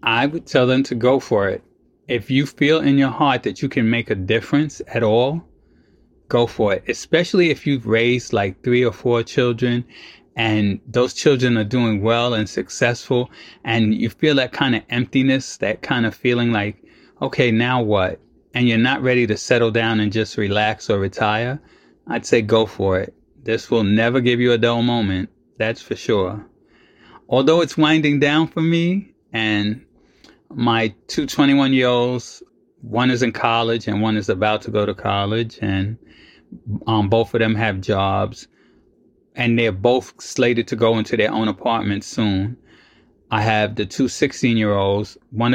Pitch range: 105-125 Hz